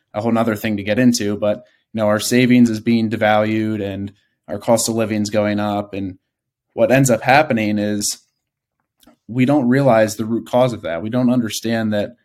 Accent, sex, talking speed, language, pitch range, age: American, male, 200 wpm, English, 105-120 Hz, 20-39